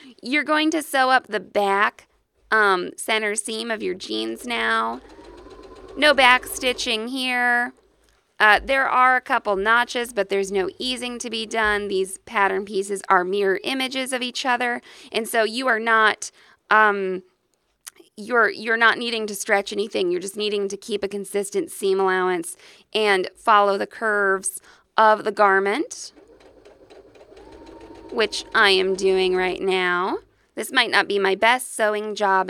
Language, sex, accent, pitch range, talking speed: English, female, American, 195-265 Hz, 155 wpm